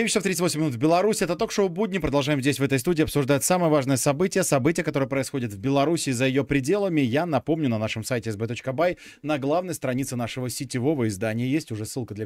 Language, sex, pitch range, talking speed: Russian, male, 115-145 Hz, 210 wpm